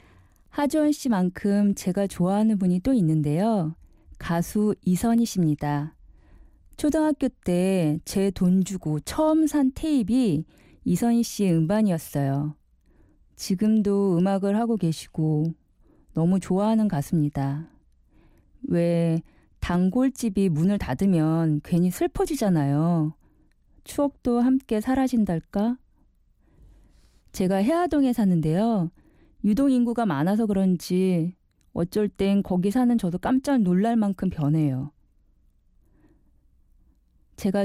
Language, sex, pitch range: Korean, female, 155-220 Hz